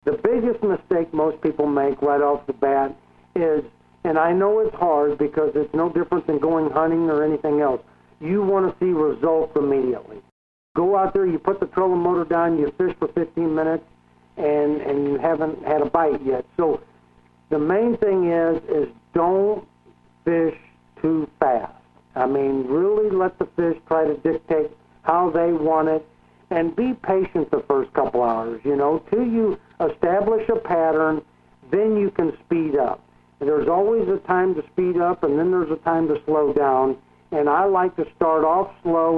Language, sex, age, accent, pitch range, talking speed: English, male, 60-79, American, 145-185 Hz, 180 wpm